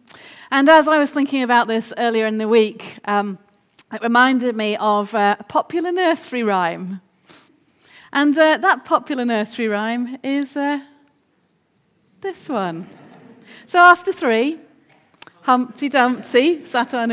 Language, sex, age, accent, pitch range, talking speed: English, female, 30-49, British, 220-290 Hz, 130 wpm